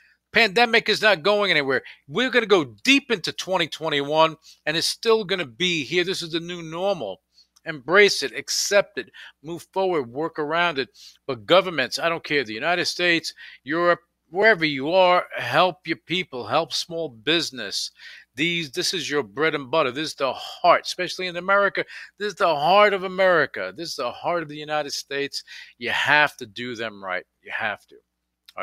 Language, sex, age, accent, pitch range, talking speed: English, male, 50-69, American, 125-170 Hz, 185 wpm